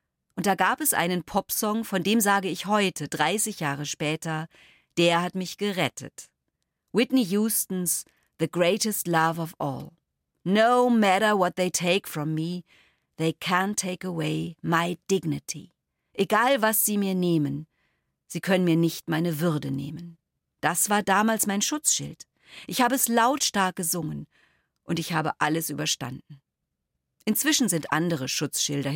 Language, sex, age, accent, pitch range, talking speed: German, female, 40-59, German, 150-195 Hz, 145 wpm